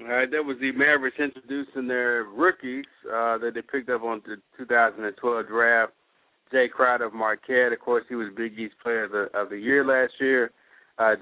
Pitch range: 110-130 Hz